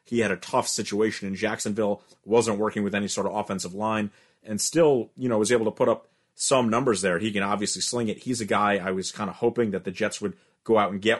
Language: English